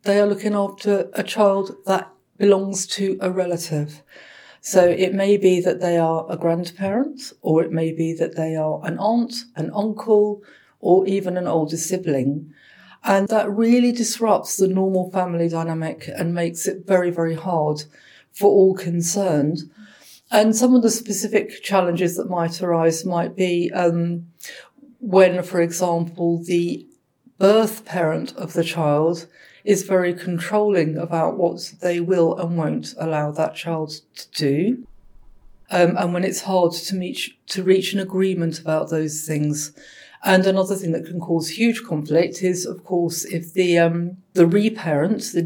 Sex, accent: female, British